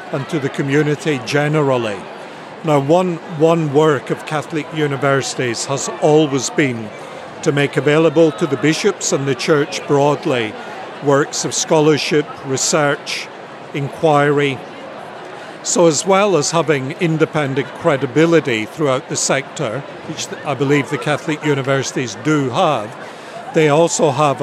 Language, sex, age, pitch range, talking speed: English, male, 50-69, 140-160 Hz, 125 wpm